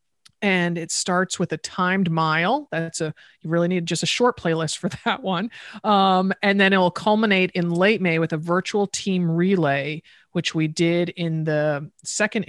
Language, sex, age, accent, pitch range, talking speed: English, male, 40-59, American, 155-195 Hz, 185 wpm